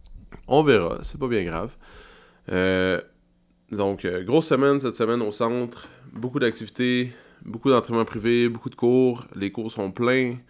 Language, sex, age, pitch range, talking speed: French, male, 20-39, 95-120 Hz, 155 wpm